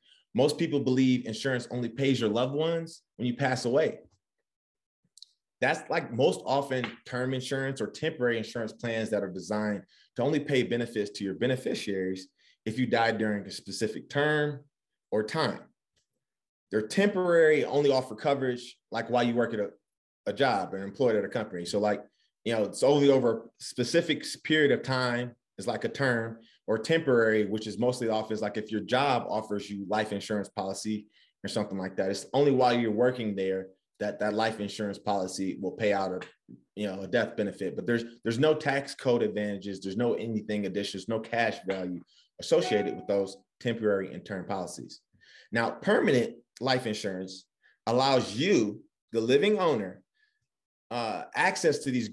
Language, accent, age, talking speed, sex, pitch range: English, American, 30-49, 170 wpm, male, 105-130 Hz